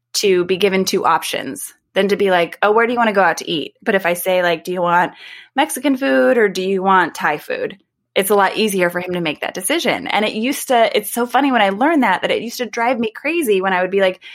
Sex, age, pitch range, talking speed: female, 20-39, 180-250 Hz, 285 wpm